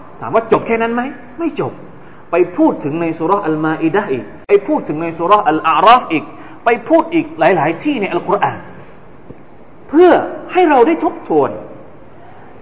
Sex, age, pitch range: male, 20-39, 150-235 Hz